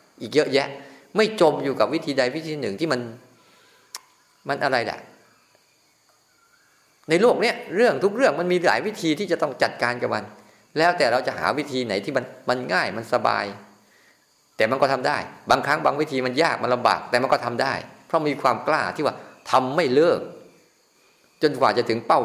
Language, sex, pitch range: Thai, male, 130-180 Hz